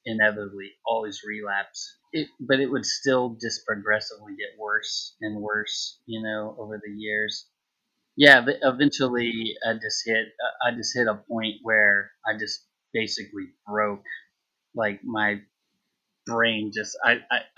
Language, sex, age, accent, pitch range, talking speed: English, male, 20-39, American, 105-130 Hz, 135 wpm